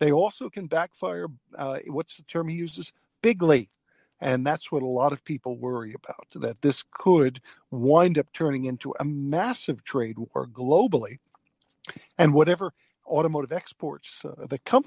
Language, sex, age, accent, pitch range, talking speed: English, male, 50-69, American, 135-175 Hz, 155 wpm